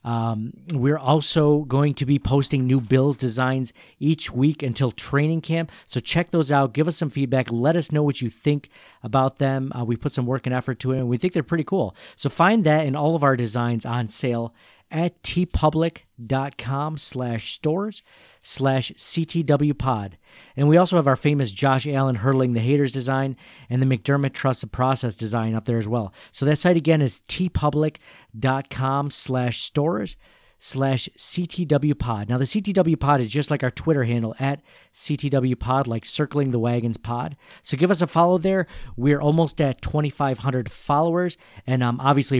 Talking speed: 180 wpm